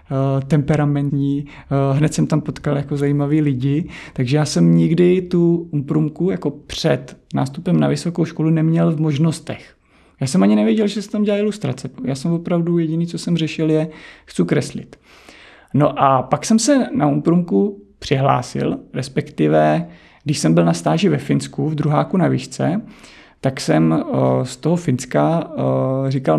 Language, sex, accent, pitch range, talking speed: Czech, male, native, 135-175 Hz, 155 wpm